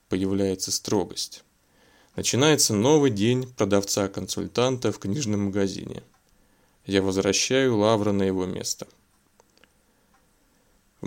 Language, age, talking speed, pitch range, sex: Russian, 20-39, 85 wpm, 100-130 Hz, male